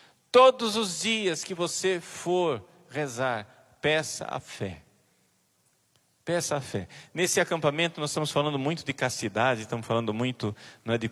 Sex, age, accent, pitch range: male, 40-59, Brazilian, 115-170 Hz